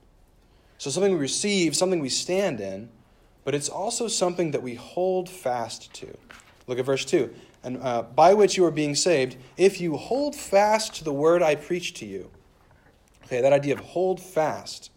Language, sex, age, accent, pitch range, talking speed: English, male, 30-49, American, 125-175 Hz, 185 wpm